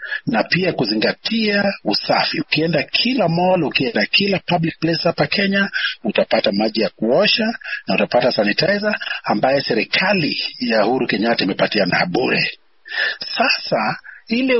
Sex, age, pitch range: male, 40-59, 150-215 Hz